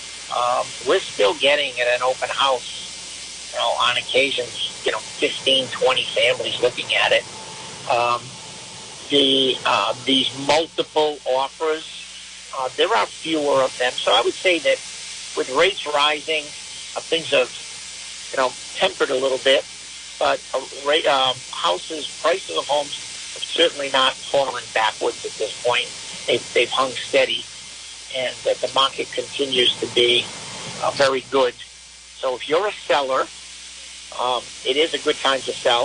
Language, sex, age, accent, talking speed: English, male, 50-69, American, 150 wpm